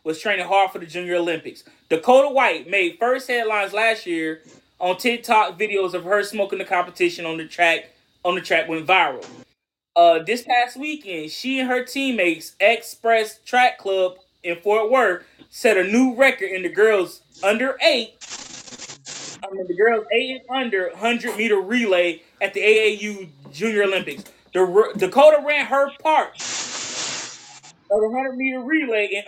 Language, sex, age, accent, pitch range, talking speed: English, male, 20-39, American, 190-265 Hz, 160 wpm